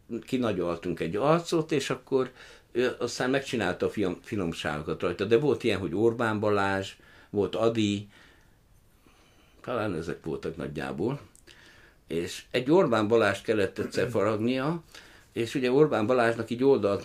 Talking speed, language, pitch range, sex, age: 125 wpm, Hungarian, 80-110 Hz, male, 60-79